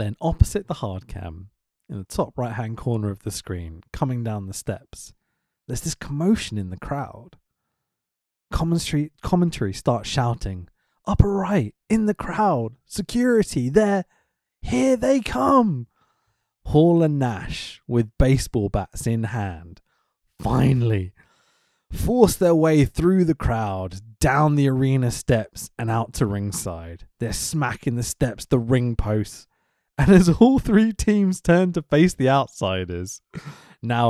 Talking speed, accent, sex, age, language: 135 wpm, British, male, 20-39, English